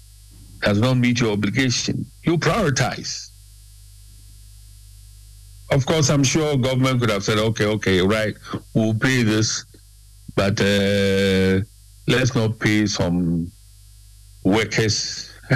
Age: 60-79